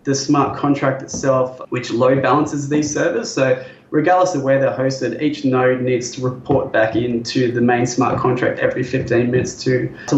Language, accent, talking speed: English, Australian, 185 wpm